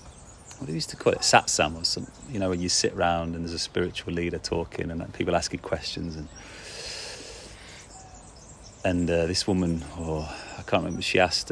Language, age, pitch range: English, 30-49, 85-100 Hz